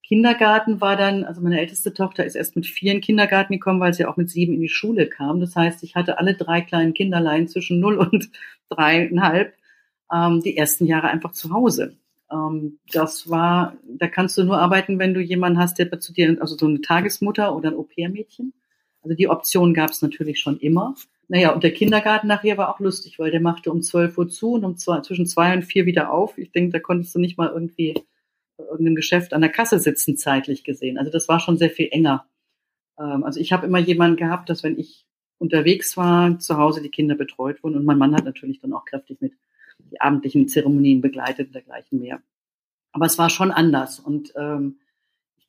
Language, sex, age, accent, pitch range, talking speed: German, female, 50-69, German, 160-190 Hz, 210 wpm